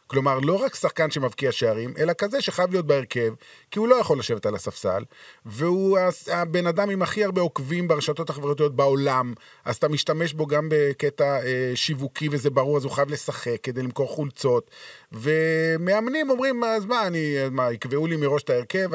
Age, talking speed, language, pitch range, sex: 30-49, 175 wpm, Hebrew, 135-185 Hz, male